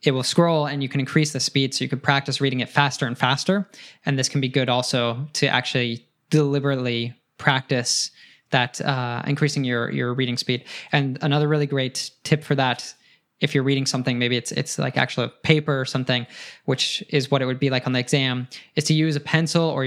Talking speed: 210 wpm